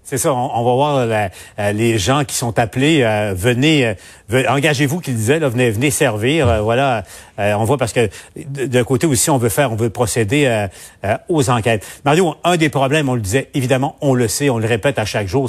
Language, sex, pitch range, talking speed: French, male, 110-145 Hz, 225 wpm